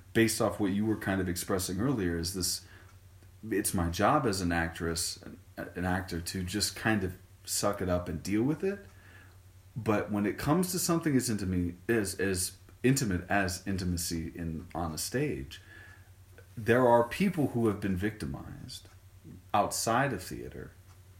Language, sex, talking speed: English, male, 160 wpm